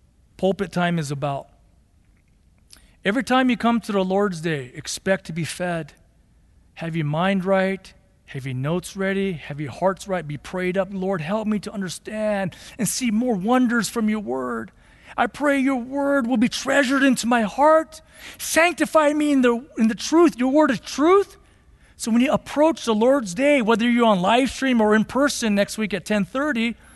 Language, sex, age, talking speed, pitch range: English, male, 40-59, 180 wpm, 205-285 Hz